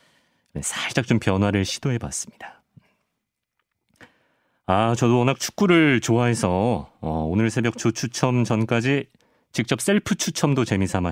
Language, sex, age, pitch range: Korean, male, 40-59, 95-145 Hz